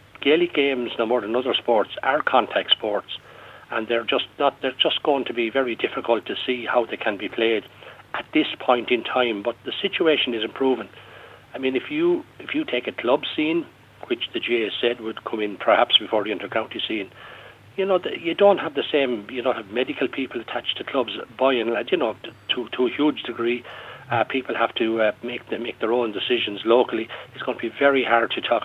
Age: 60-79